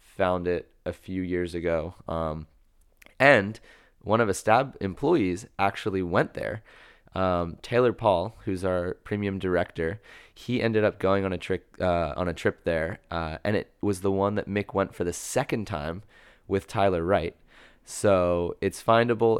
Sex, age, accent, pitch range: male, 20-39, American, 90-105 Hz